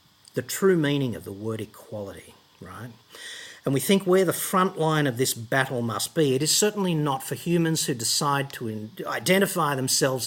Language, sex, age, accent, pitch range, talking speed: English, male, 50-69, Australian, 125-165 Hz, 180 wpm